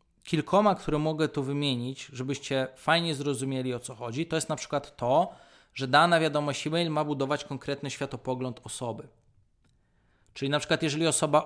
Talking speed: 155 wpm